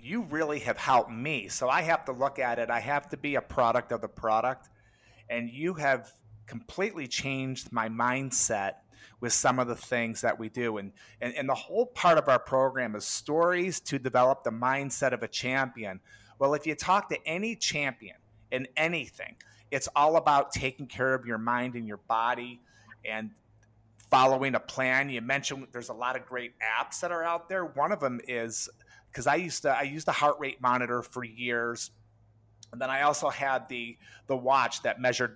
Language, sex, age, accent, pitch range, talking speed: English, male, 30-49, American, 115-140 Hz, 195 wpm